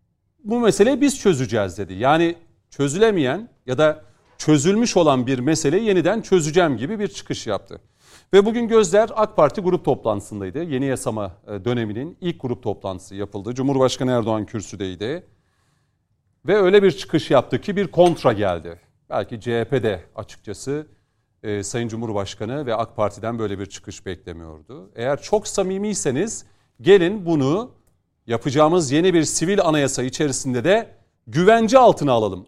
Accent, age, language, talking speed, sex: native, 40-59, Turkish, 135 wpm, male